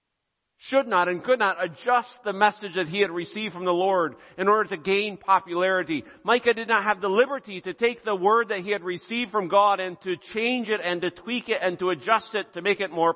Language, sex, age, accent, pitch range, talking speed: English, male, 50-69, American, 185-235 Hz, 235 wpm